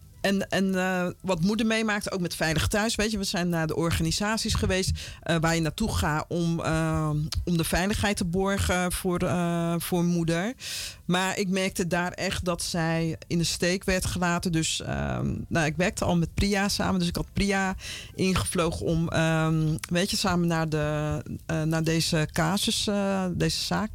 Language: Dutch